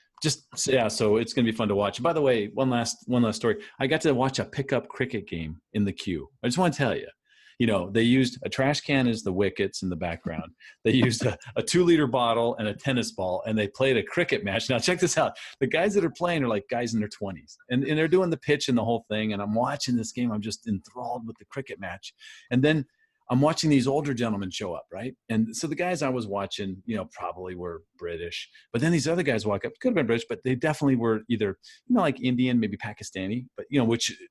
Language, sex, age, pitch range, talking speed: English, male, 40-59, 110-150 Hz, 260 wpm